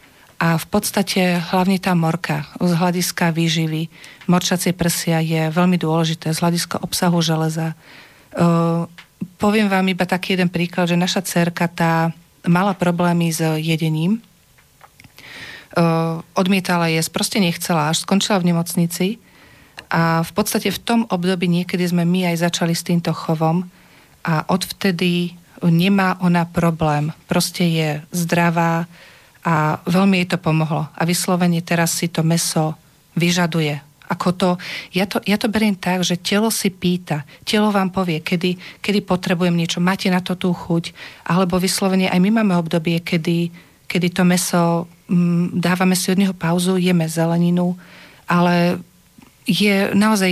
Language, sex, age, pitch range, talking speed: Slovak, female, 40-59, 165-185 Hz, 145 wpm